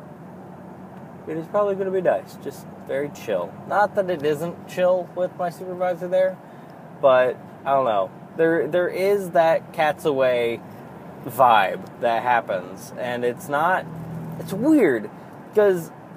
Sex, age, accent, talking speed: male, 20-39, American, 140 wpm